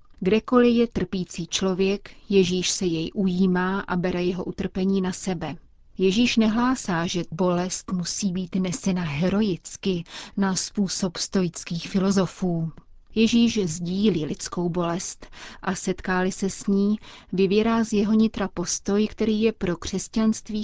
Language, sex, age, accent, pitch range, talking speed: Czech, female, 30-49, native, 180-210 Hz, 130 wpm